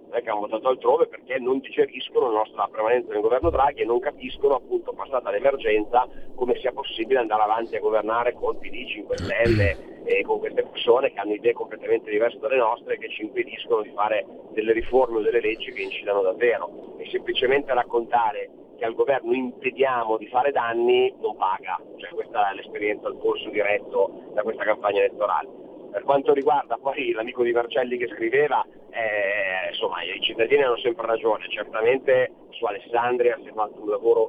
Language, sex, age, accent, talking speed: Italian, male, 40-59, native, 175 wpm